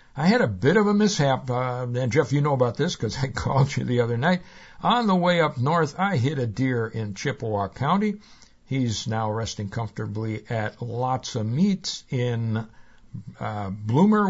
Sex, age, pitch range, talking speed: male, 60-79, 115-165 Hz, 185 wpm